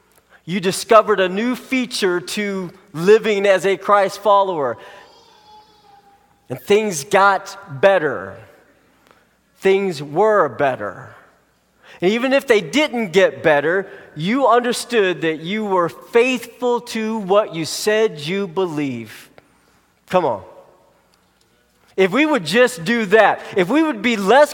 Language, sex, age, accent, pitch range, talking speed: English, male, 30-49, American, 190-235 Hz, 120 wpm